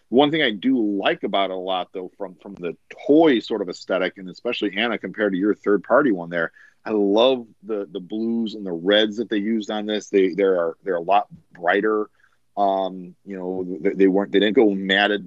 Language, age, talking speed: English, 40-59, 215 wpm